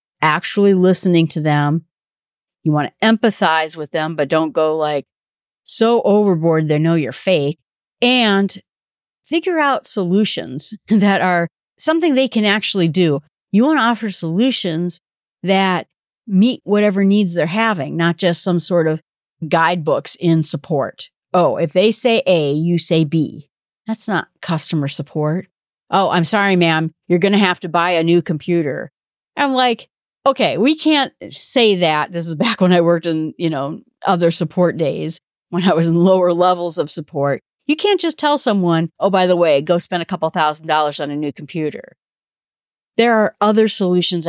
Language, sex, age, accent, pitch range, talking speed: English, female, 40-59, American, 160-210 Hz, 170 wpm